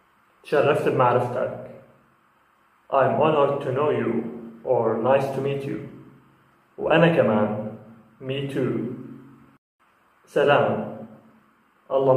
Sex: male